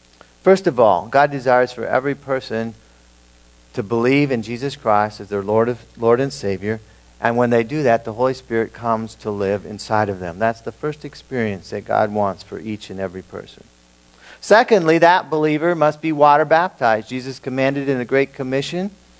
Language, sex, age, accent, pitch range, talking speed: English, male, 50-69, American, 105-135 Hz, 180 wpm